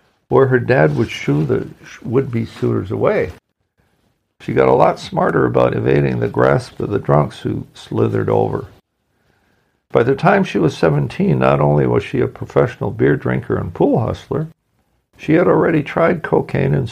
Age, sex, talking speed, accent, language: 60-79, male, 165 wpm, American, English